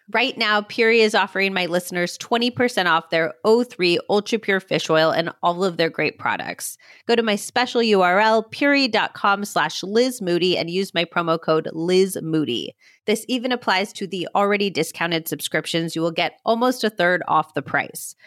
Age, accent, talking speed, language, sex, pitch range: 30-49, American, 175 wpm, English, female, 175-225 Hz